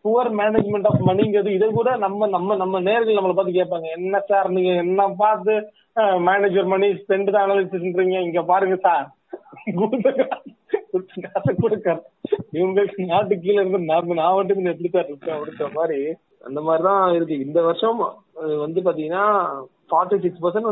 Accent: native